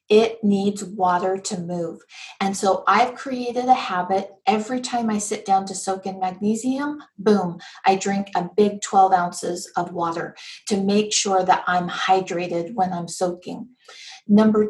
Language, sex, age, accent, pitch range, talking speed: English, female, 40-59, American, 190-225 Hz, 160 wpm